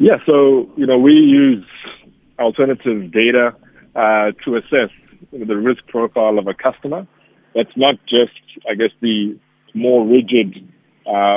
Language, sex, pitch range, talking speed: English, male, 105-130 Hz, 150 wpm